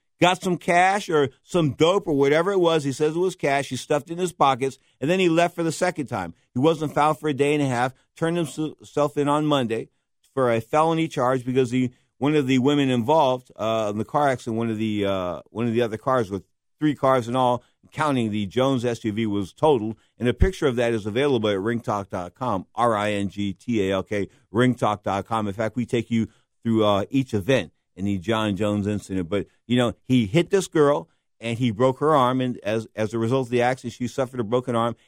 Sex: male